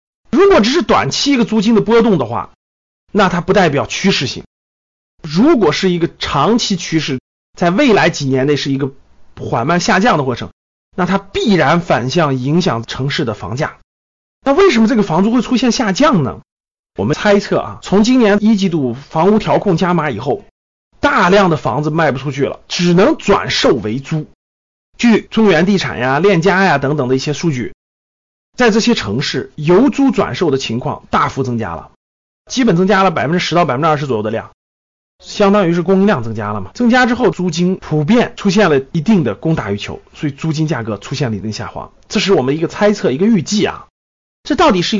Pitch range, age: 130-205 Hz, 30-49